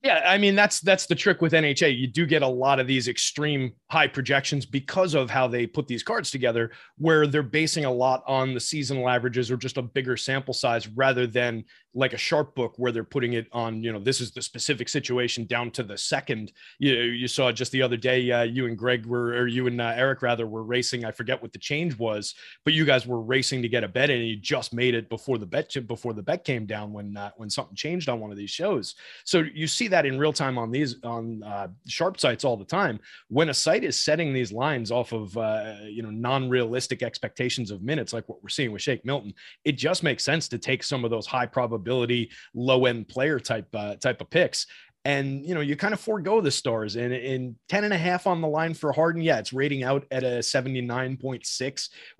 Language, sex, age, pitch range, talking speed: English, male, 30-49, 120-145 Hz, 245 wpm